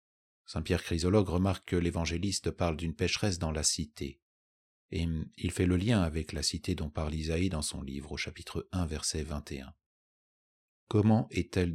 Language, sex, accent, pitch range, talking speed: French, male, French, 75-95 Hz, 165 wpm